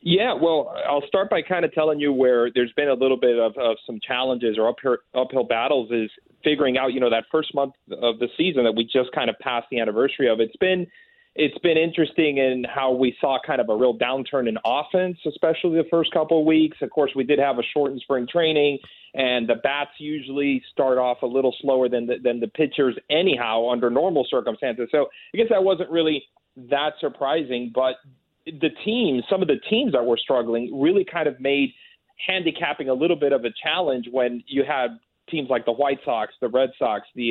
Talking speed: 215 wpm